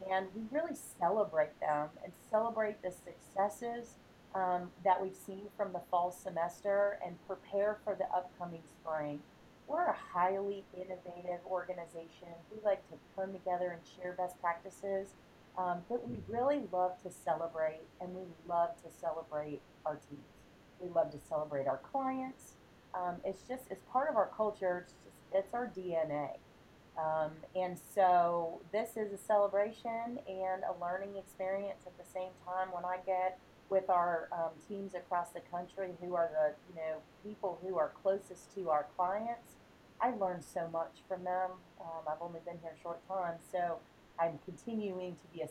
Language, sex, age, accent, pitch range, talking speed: English, female, 30-49, American, 160-190 Hz, 165 wpm